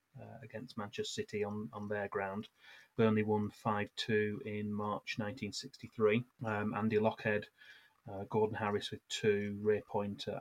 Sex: male